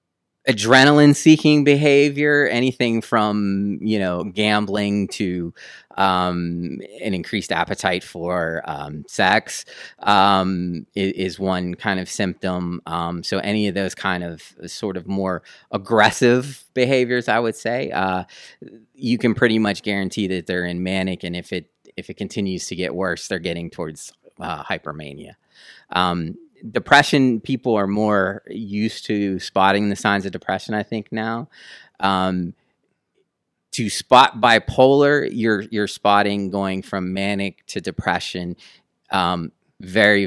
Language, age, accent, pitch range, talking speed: English, 30-49, American, 90-105 Hz, 135 wpm